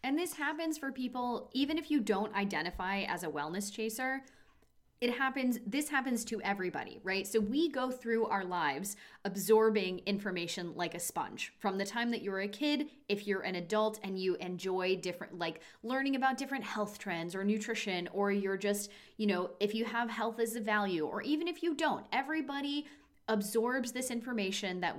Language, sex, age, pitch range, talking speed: English, female, 20-39, 195-245 Hz, 185 wpm